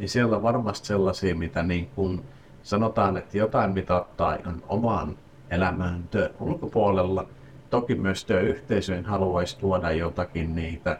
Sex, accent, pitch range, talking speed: male, native, 90-110 Hz, 125 wpm